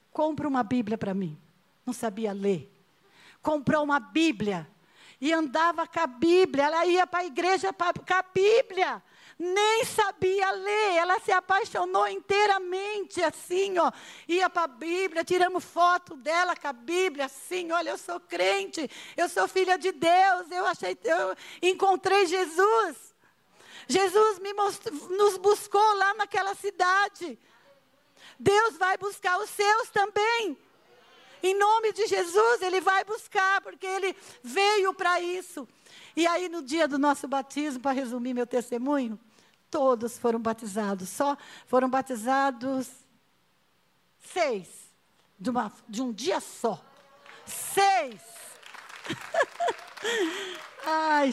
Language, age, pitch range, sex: Portuguese, 50-69, 270-380 Hz, female